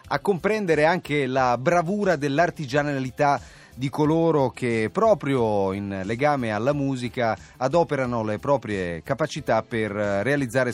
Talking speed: 110 wpm